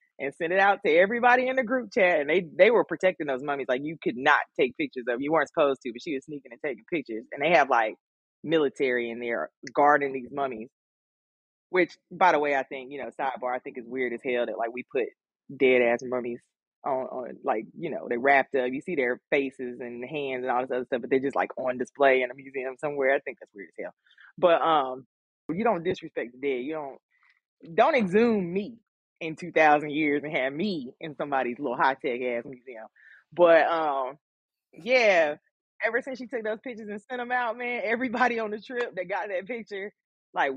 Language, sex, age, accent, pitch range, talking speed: English, female, 20-39, American, 130-180 Hz, 220 wpm